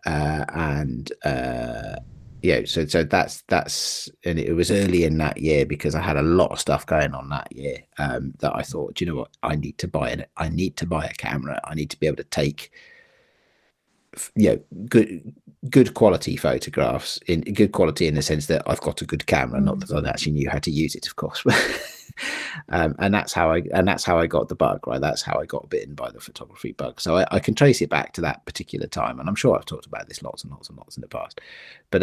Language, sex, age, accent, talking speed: English, male, 40-59, British, 240 wpm